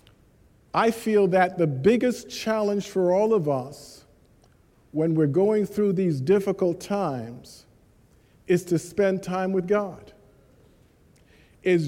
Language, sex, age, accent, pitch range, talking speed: English, male, 50-69, American, 160-215 Hz, 120 wpm